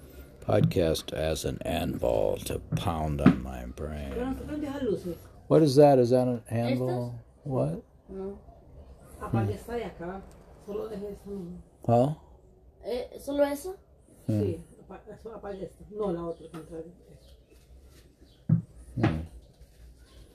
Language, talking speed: English, 60 wpm